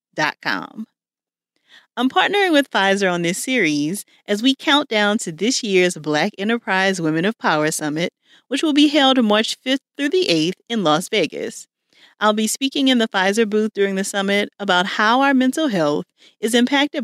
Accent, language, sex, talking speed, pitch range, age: American, English, female, 175 wpm, 170-260 Hz, 40-59